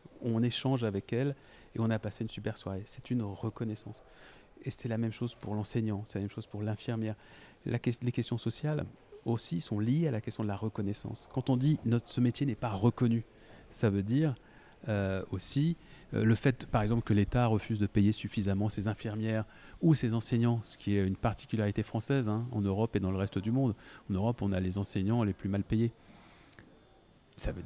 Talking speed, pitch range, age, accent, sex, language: 215 wpm, 100-120 Hz, 40-59, French, male, French